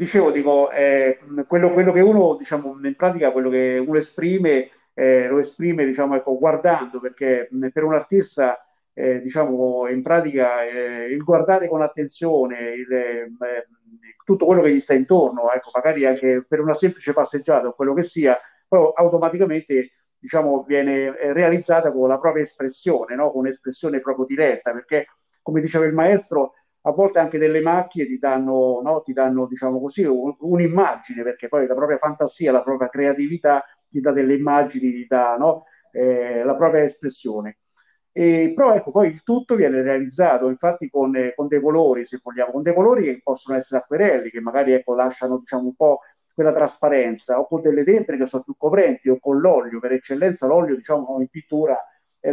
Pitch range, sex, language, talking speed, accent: 130-160 Hz, male, Italian, 175 wpm, native